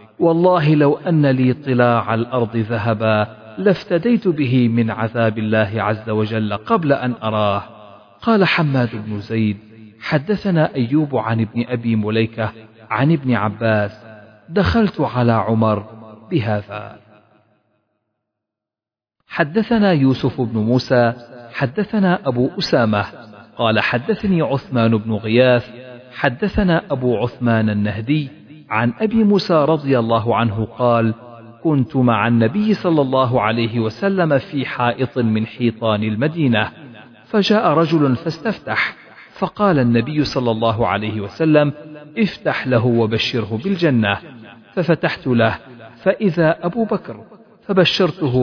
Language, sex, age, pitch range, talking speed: Arabic, male, 40-59, 110-155 Hz, 110 wpm